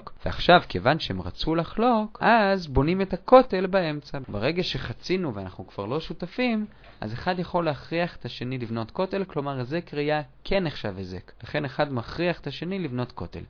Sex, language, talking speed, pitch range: male, Hebrew, 165 wpm, 120-175 Hz